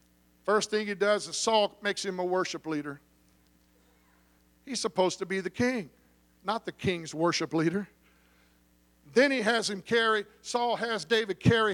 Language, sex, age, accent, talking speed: English, male, 50-69, American, 160 wpm